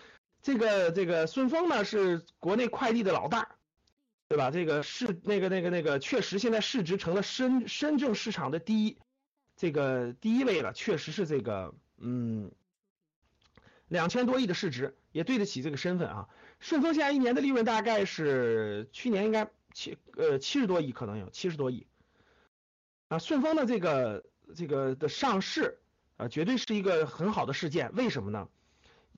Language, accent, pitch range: Chinese, native, 165-260 Hz